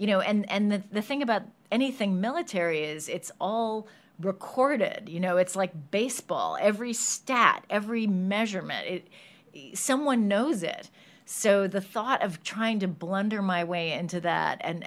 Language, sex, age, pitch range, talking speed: English, female, 40-59, 175-215 Hz, 155 wpm